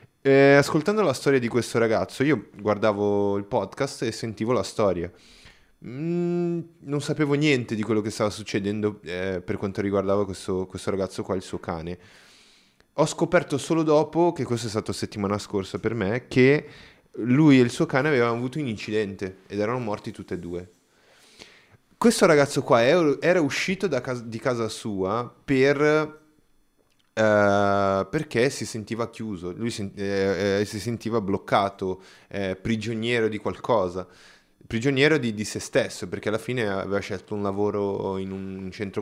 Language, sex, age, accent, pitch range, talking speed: Italian, male, 20-39, native, 100-140 Hz, 160 wpm